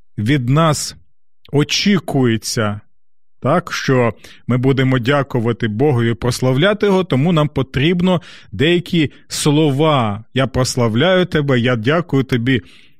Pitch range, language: 115-155 Hz, Ukrainian